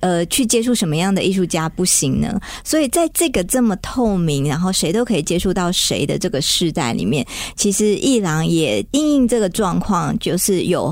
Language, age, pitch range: Chinese, 50-69, 165-215 Hz